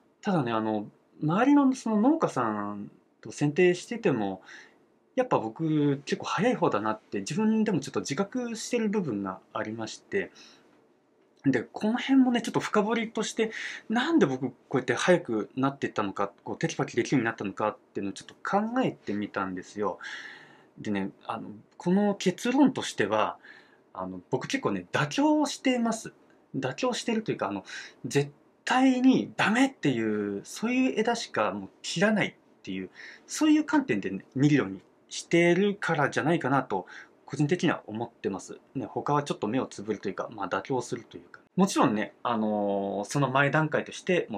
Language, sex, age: Japanese, male, 20-39